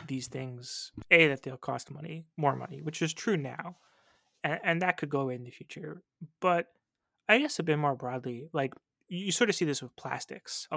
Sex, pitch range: male, 135-170 Hz